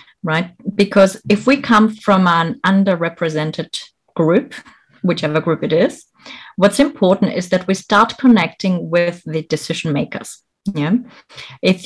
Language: English